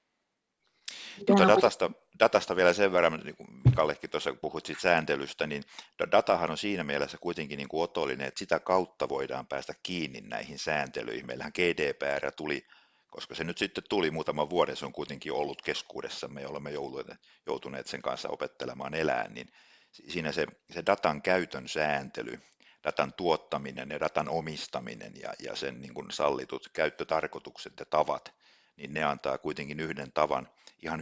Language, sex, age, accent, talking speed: Finnish, male, 60-79, native, 145 wpm